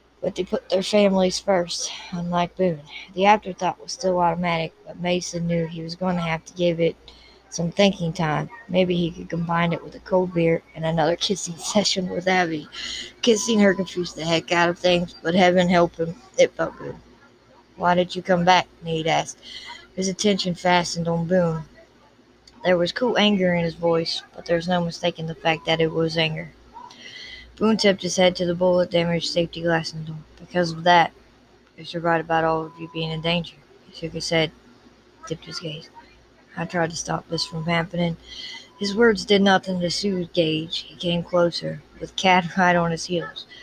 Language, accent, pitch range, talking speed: English, American, 165-185 Hz, 195 wpm